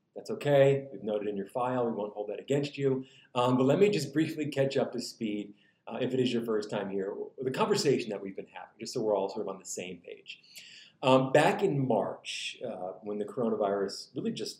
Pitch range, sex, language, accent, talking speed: 125-175 Hz, male, English, American, 240 wpm